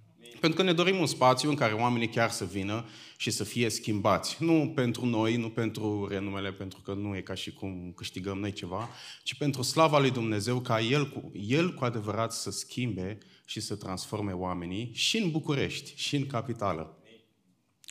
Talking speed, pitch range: 180 wpm, 110-140 Hz